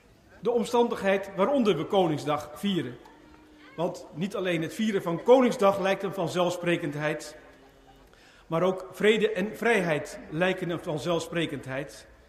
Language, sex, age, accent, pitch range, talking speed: Dutch, male, 50-69, Dutch, 165-200 Hz, 115 wpm